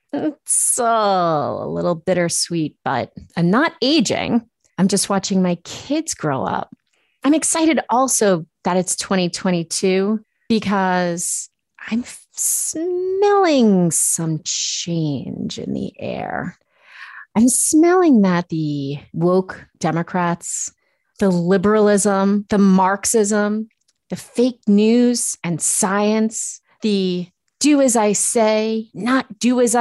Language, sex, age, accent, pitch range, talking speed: English, female, 30-49, American, 175-235 Hz, 105 wpm